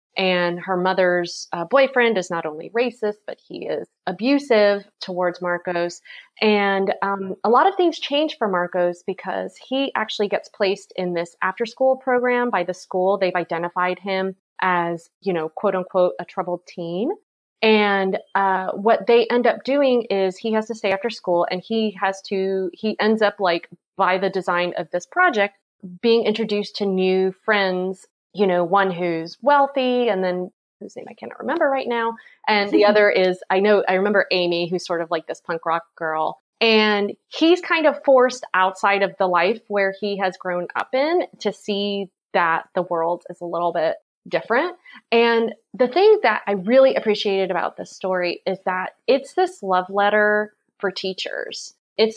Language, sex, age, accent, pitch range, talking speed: English, female, 30-49, American, 180-225 Hz, 180 wpm